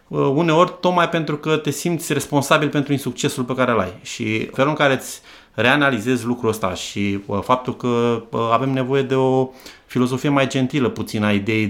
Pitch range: 105-130 Hz